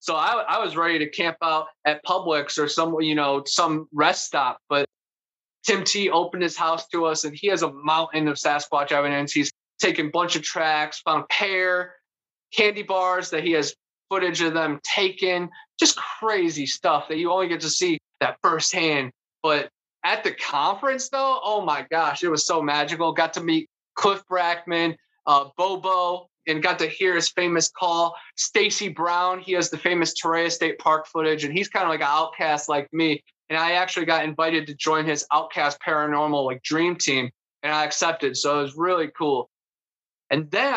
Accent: American